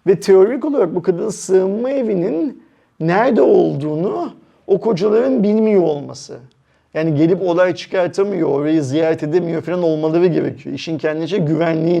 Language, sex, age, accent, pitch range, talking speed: Turkish, male, 40-59, native, 150-205 Hz, 130 wpm